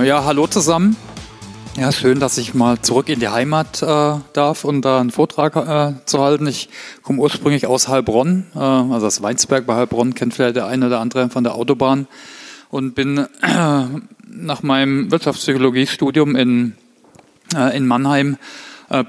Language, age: German, 40-59